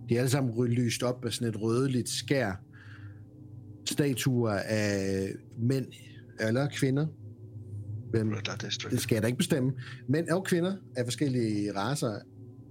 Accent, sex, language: native, male, Danish